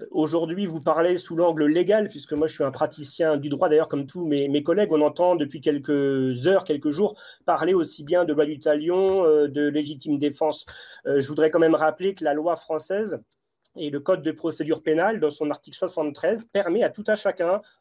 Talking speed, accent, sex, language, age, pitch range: 205 wpm, French, male, French, 30-49, 150-195 Hz